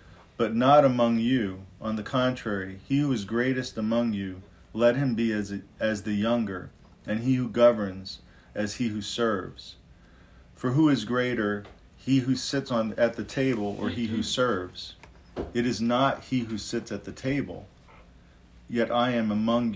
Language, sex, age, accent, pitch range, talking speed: English, male, 40-59, American, 100-120 Hz, 175 wpm